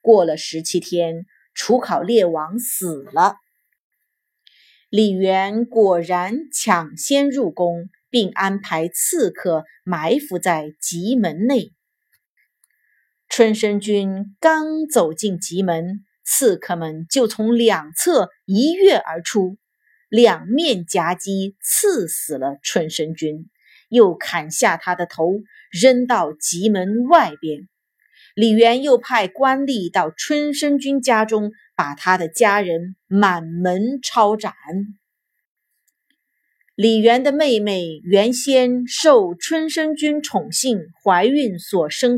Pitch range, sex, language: 175-245 Hz, female, Chinese